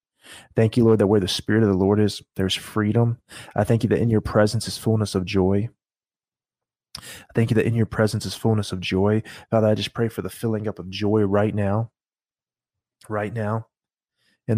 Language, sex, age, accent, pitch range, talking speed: English, male, 30-49, American, 100-110 Hz, 205 wpm